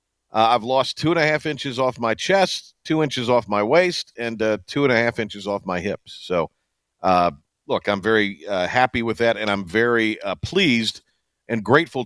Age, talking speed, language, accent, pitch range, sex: 50-69, 210 wpm, English, American, 110-145 Hz, male